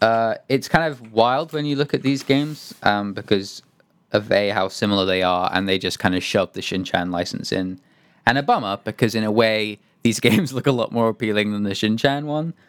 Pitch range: 95-130 Hz